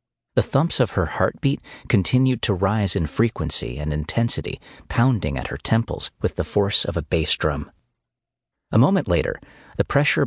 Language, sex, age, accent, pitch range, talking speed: English, male, 30-49, American, 85-115 Hz, 165 wpm